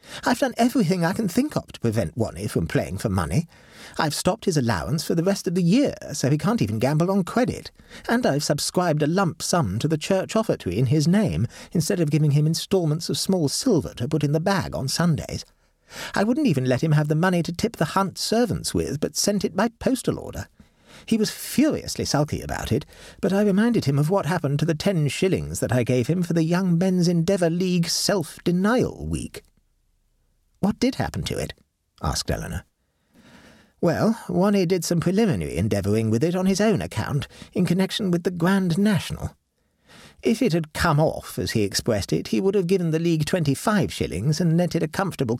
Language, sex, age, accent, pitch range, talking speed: English, male, 40-59, British, 145-190 Hz, 205 wpm